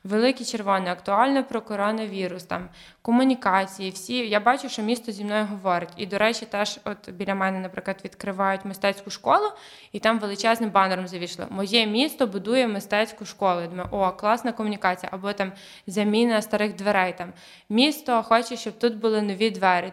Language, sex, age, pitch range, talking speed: Ukrainian, female, 20-39, 200-255 Hz, 160 wpm